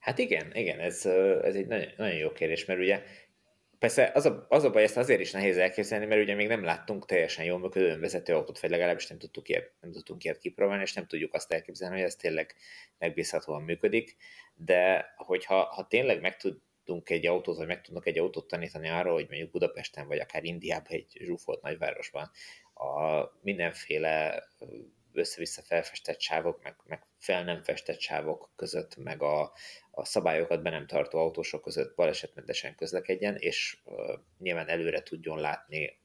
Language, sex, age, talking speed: Hungarian, male, 30-49, 175 wpm